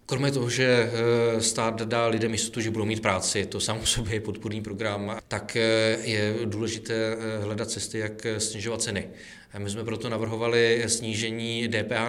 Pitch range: 105-115 Hz